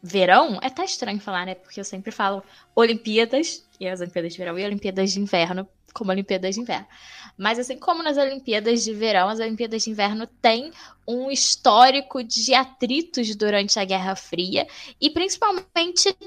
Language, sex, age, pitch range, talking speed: Portuguese, female, 10-29, 205-265 Hz, 170 wpm